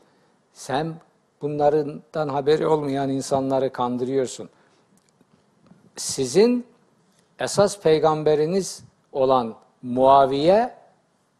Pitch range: 130-185 Hz